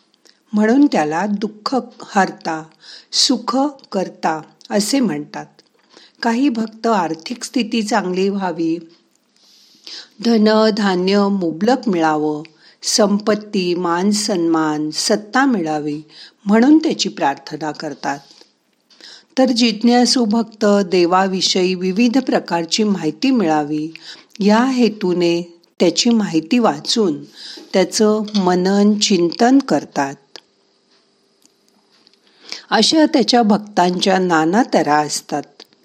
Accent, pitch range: native, 170-235 Hz